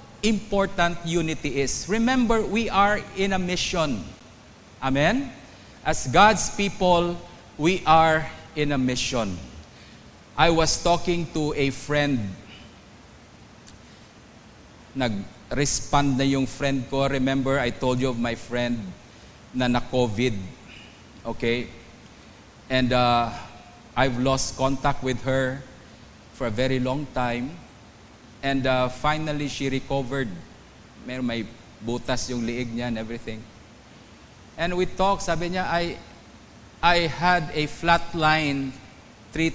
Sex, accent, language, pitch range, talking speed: male, Filipino, English, 120-170 Hz, 115 wpm